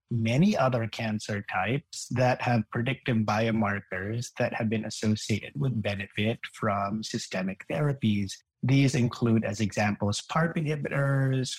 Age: 30-49